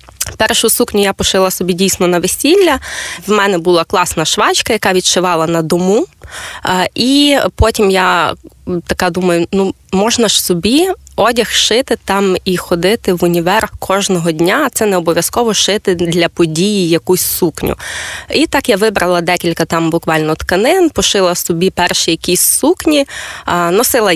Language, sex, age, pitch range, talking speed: Ukrainian, female, 20-39, 180-225 Hz, 140 wpm